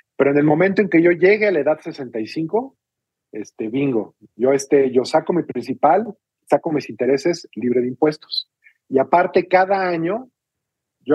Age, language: 40-59, Spanish